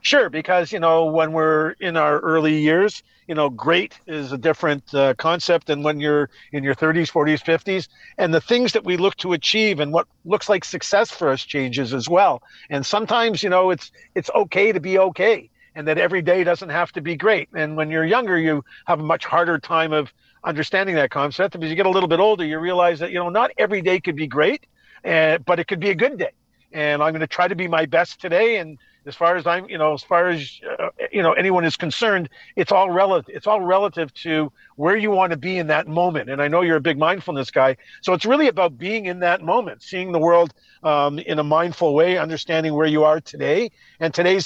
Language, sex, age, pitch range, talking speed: English, male, 50-69, 155-195 Hz, 235 wpm